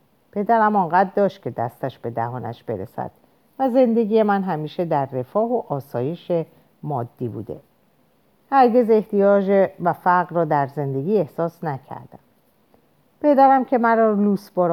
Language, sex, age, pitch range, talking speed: Persian, female, 50-69, 150-220 Hz, 130 wpm